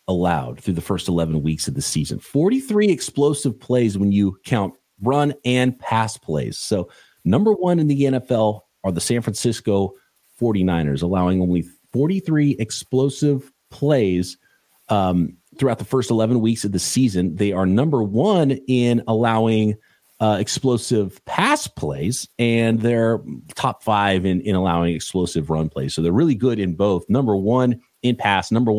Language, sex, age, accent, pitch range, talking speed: English, male, 40-59, American, 95-130 Hz, 155 wpm